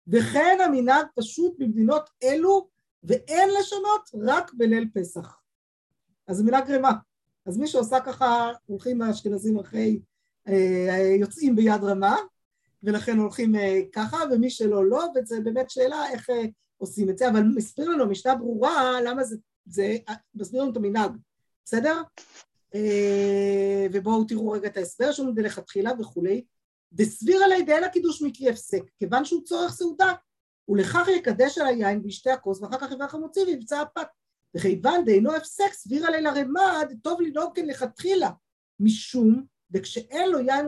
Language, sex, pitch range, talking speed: Hebrew, female, 215-315 Hz, 140 wpm